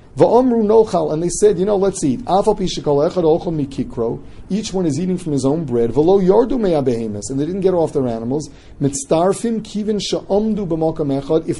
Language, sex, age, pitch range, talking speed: English, male, 40-59, 135-180 Hz, 120 wpm